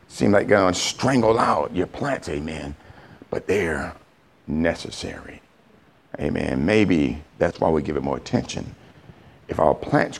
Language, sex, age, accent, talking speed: English, male, 60-79, American, 140 wpm